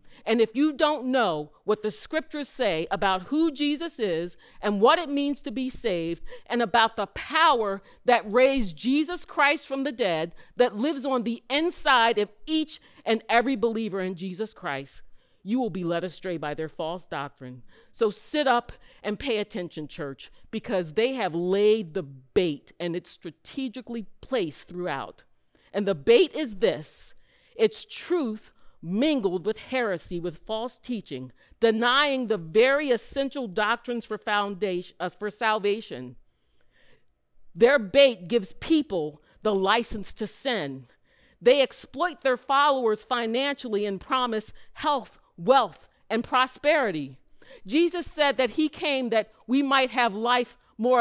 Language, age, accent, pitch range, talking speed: English, 40-59, American, 190-260 Hz, 145 wpm